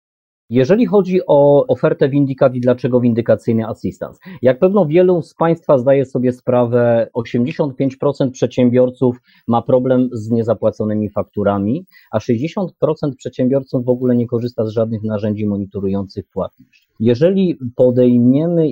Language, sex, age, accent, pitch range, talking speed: Polish, male, 30-49, native, 110-125 Hz, 120 wpm